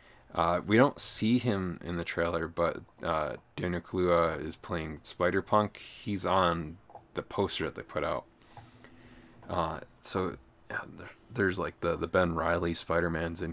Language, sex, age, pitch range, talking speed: English, male, 30-49, 85-105 Hz, 155 wpm